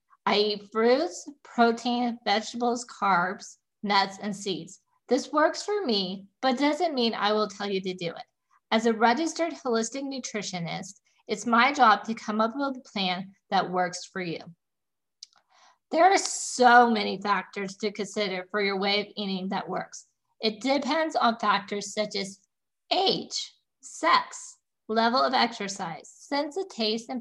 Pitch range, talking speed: 200-260 Hz, 155 wpm